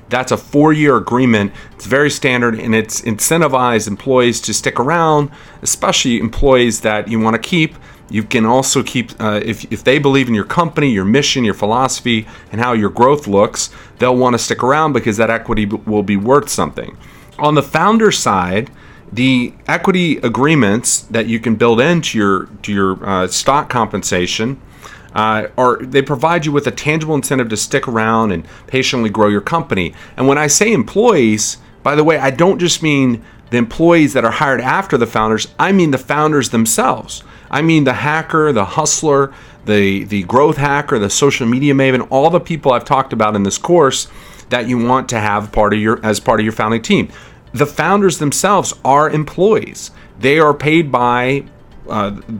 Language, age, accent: English, 40-59, American